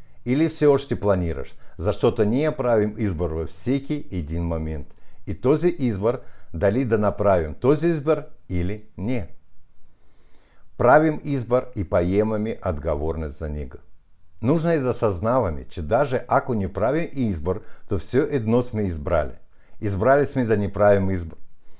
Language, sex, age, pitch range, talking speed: Bulgarian, male, 60-79, 90-125 Hz, 145 wpm